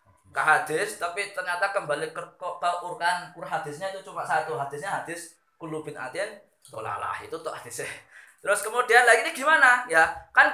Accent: native